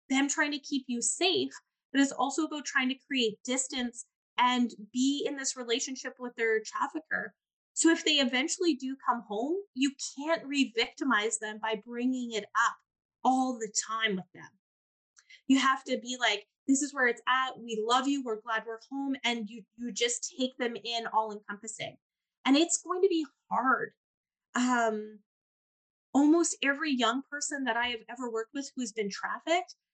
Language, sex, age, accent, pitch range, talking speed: English, female, 20-39, American, 230-280 Hz, 180 wpm